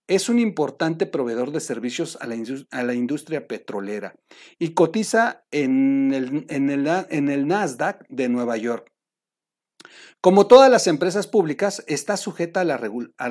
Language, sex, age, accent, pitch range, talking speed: Spanish, male, 40-59, Mexican, 130-190 Hz, 120 wpm